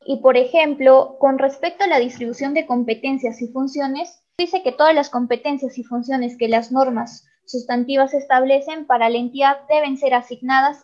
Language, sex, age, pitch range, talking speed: Spanish, female, 20-39, 240-290 Hz, 165 wpm